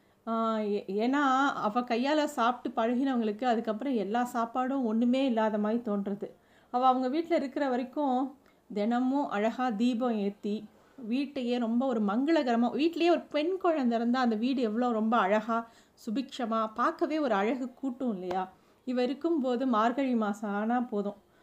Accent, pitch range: native, 215-260 Hz